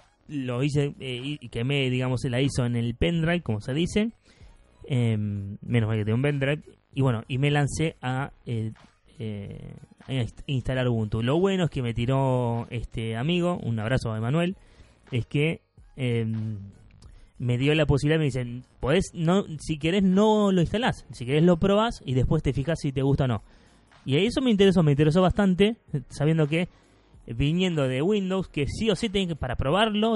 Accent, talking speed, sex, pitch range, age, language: Argentinian, 185 wpm, male, 120-160 Hz, 20-39, Spanish